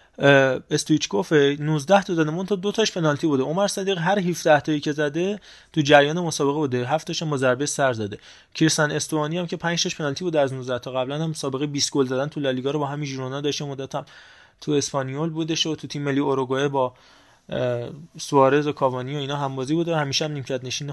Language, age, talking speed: Persian, 20-39, 205 wpm